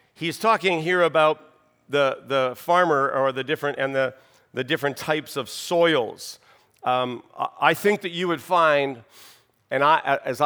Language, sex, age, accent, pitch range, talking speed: English, male, 50-69, American, 135-180 Hz, 155 wpm